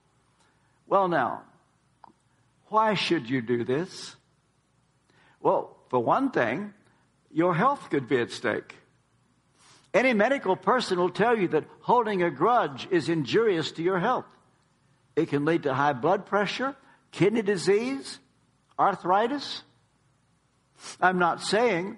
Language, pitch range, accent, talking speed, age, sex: English, 140-200 Hz, American, 125 wpm, 60-79, male